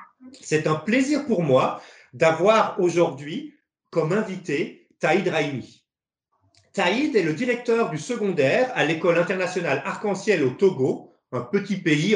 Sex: male